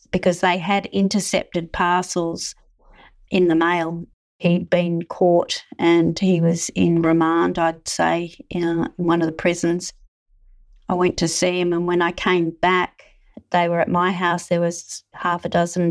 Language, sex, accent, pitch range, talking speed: English, female, Australian, 175-195 Hz, 160 wpm